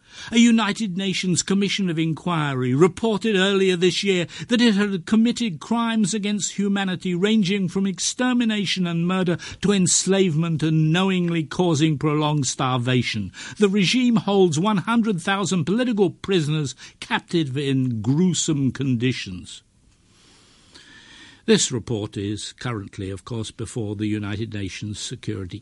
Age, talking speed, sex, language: 60-79, 115 wpm, male, English